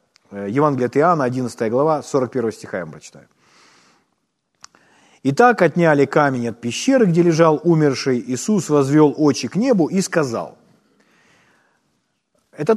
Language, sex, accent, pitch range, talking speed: Ukrainian, male, native, 150-210 Hz, 120 wpm